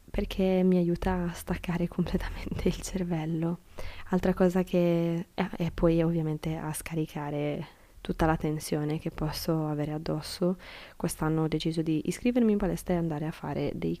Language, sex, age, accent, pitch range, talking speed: Italian, female, 20-39, native, 160-180 Hz, 150 wpm